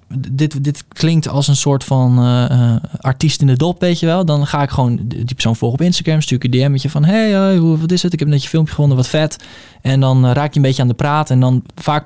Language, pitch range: Dutch, 125-155 Hz